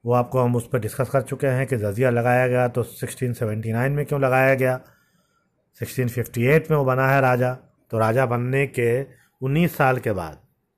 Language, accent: Hindi, native